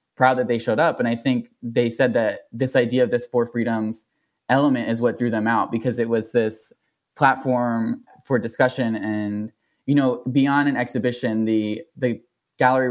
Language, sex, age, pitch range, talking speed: English, male, 20-39, 110-130 Hz, 180 wpm